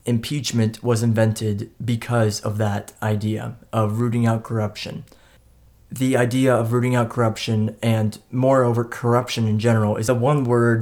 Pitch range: 110-120 Hz